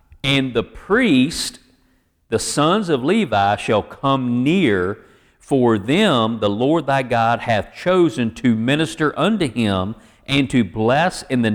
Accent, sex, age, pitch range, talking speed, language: American, male, 50-69, 105-140 Hz, 140 wpm, English